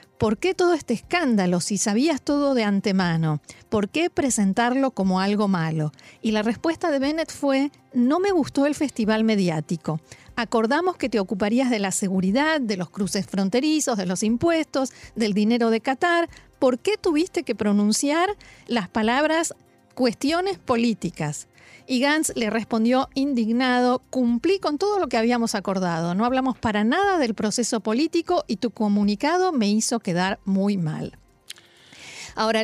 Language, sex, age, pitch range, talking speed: Spanish, female, 40-59, 200-270 Hz, 155 wpm